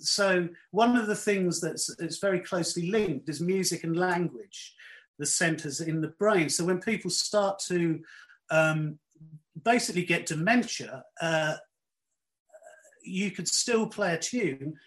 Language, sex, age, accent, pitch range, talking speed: English, male, 40-59, British, 160-210 Hz, 140 wpm